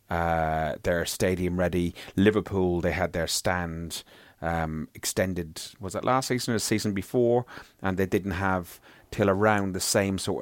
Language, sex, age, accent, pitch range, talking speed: English, male, 30-49, British, 85-105 Hz, 160 wpm